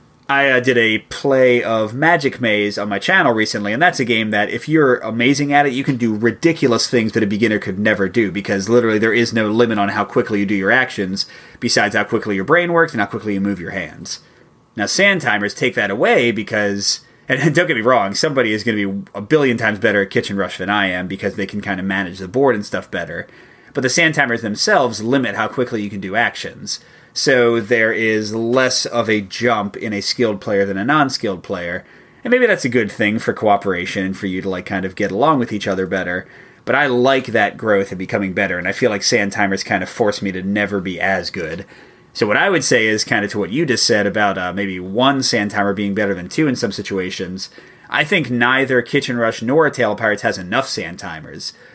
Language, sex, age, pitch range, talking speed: English, male, 30-49, 100-125 Hz, 240 wpm